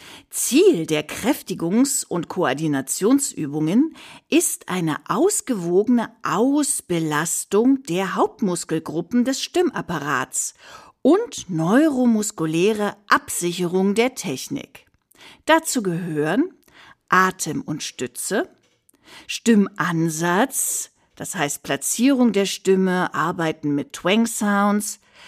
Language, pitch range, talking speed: German, 175-265 Hz, 75 wpm